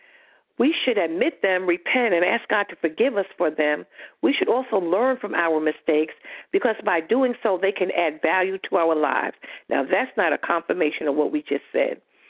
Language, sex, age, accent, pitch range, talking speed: English, female, 50-69, American, 175-255 Hz, 200 wpm